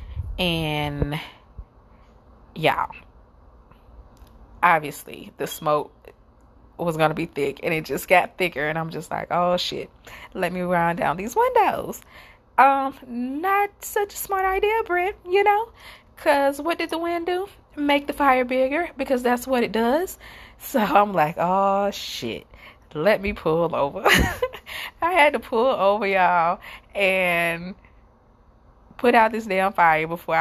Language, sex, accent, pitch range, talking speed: English, female, American, 160-270 Hz, 145 wpm